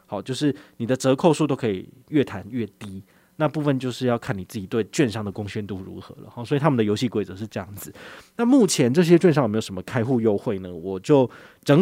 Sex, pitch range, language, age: male, 110-150 Hz, Chinese, 20-39